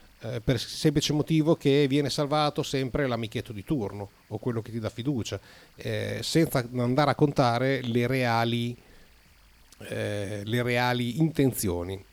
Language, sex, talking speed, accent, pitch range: Italian, male, 145 wpm, native, 105-140 Hz